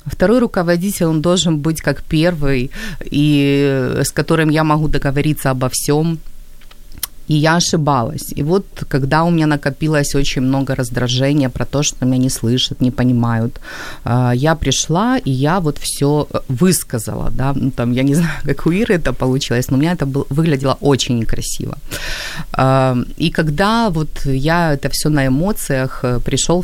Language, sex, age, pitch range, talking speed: Ukrainian, female, 30-49, 135-170 Hz, 160 wpm